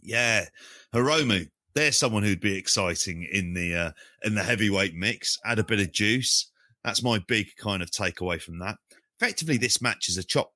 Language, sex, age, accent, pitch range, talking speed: English, male, 30-49, British, 85-110 Hz, 190 wpm